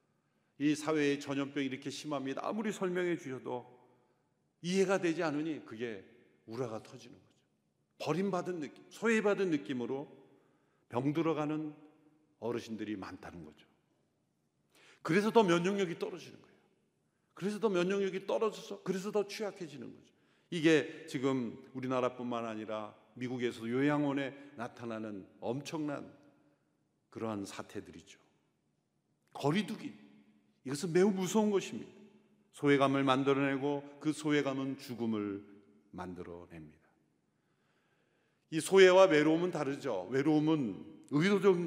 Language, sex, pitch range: Korean, male, 120-185 Hz